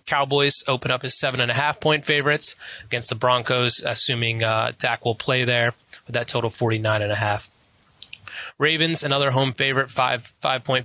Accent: American